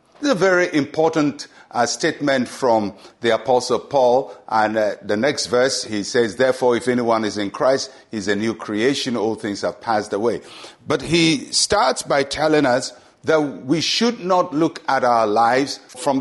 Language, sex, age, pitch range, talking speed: English, male, 50-69, 125-180 Hz, 180 wpm